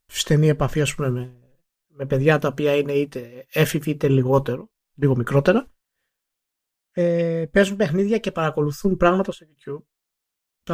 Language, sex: Greek, male